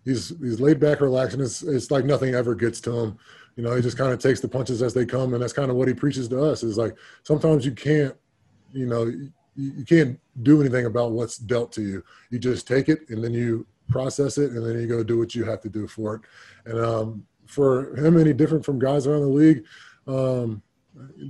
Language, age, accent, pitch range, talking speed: English, 20-39, American, 115-130 Hz, 240 wpm